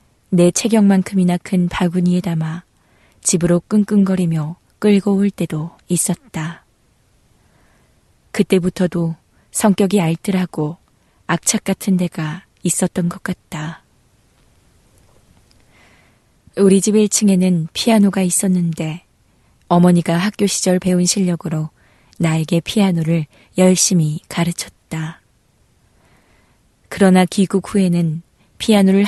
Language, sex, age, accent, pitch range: Korean, female, 20-39, native, 165-190 Hz